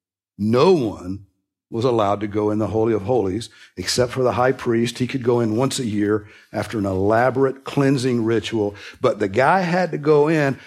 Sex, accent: male, American